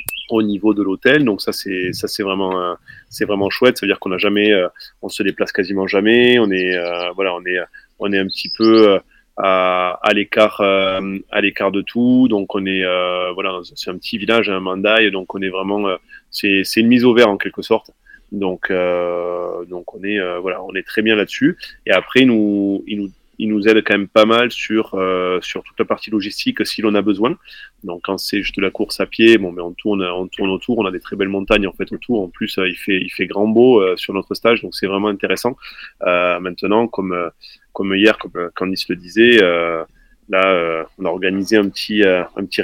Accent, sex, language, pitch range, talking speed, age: French, male, French, 95-110 Hz, 235 wpm, 20-39